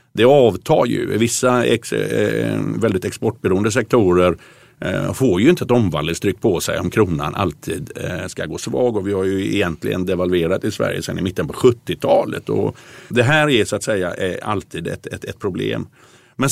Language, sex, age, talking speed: Swedish, male, 50-69, 170 wpm